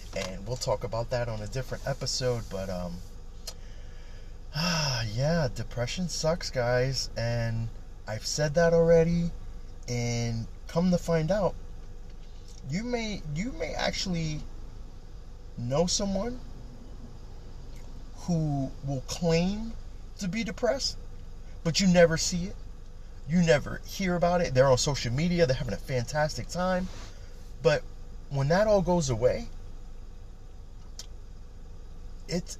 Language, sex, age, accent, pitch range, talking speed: English, male, 30-49, American, 95-150 Hz, 120 wpm